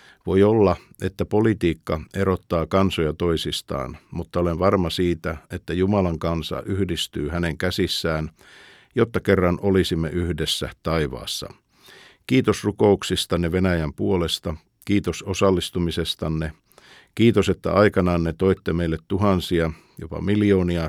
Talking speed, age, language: 105 wpm, 50-69, Finnish